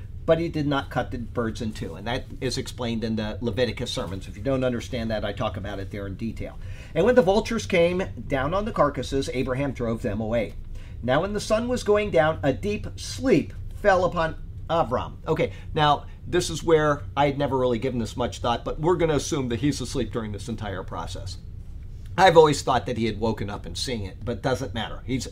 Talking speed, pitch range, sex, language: 225 wpm, 105-145 Hz, male, English